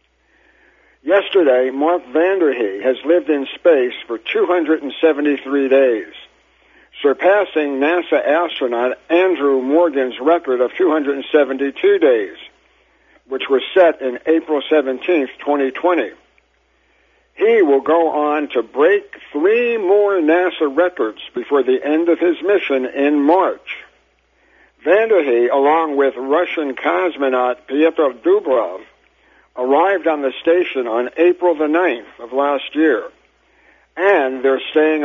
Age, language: 60-79, English